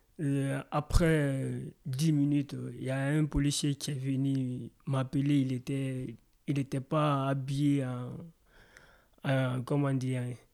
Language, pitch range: French, 130-145 Hz